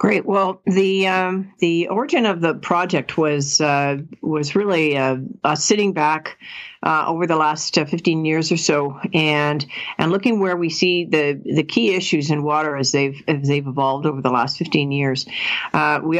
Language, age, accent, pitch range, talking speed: English, 50-69, American, 150-175 Hz, 185 wpm